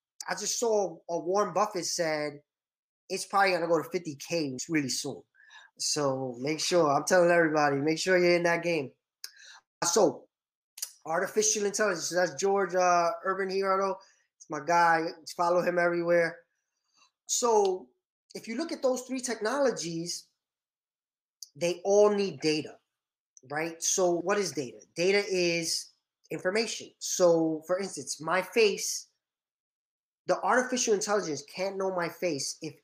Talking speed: 140 wpm